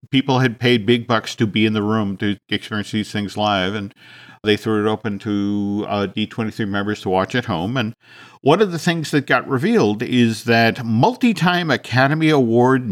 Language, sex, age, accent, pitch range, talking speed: English, male, 50-69, American, 105-145 Hz, 190 wpm